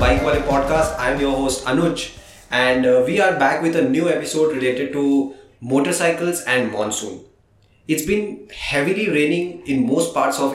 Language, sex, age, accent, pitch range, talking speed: English, male, 20-39, Indian, 125-155 Hz, 160 wpm